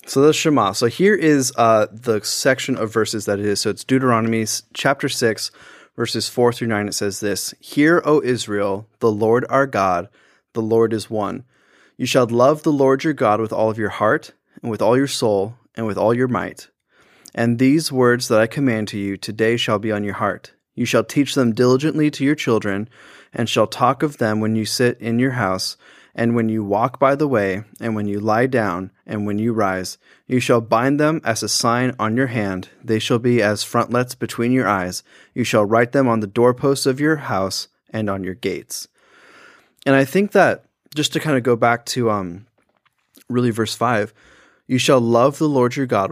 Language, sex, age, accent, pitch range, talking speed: English, male, 20-39, American, 105-130 Hz, 210 wpm